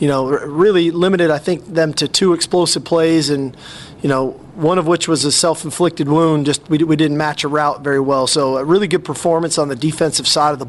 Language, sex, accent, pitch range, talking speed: English, male, American, 150-175 Hz, 230 wpm